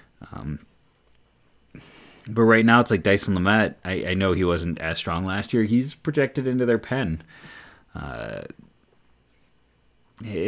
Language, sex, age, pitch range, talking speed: English, male, 30-49, 80-105 Hz, 130 wpm